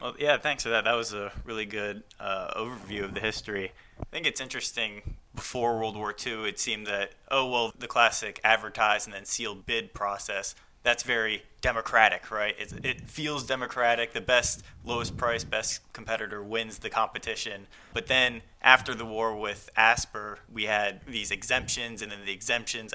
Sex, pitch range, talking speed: male, 100-120 Hz, 180 wpm